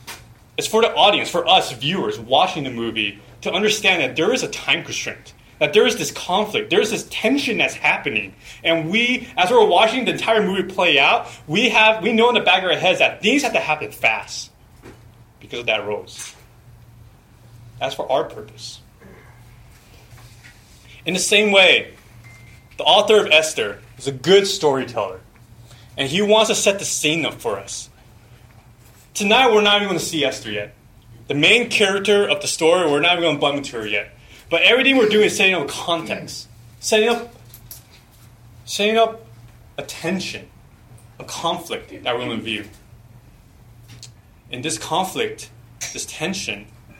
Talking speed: 175 wpm